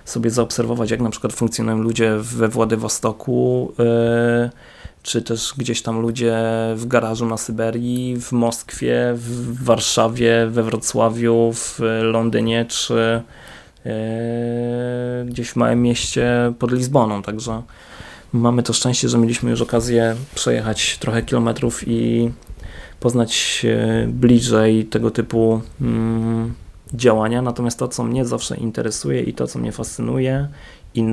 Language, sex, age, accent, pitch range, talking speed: Polish, male, 20-39, native, 110-120 Hz, 125 wpm